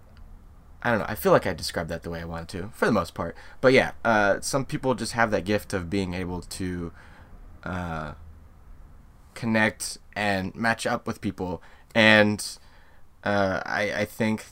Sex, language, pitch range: male, English, 85-110 Hz